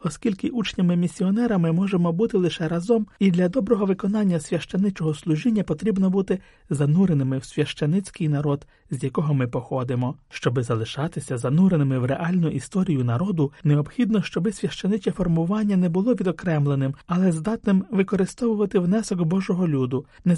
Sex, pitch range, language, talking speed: male, 135-195 Hz, Ukrainian, 125 wpm